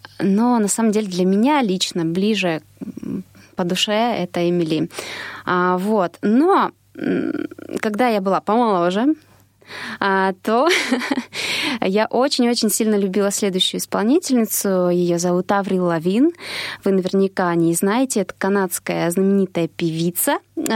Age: 20-39